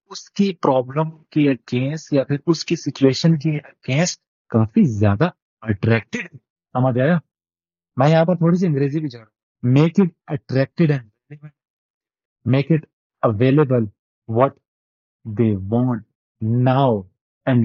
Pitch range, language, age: 120-160 Hz, Urdu, 30-49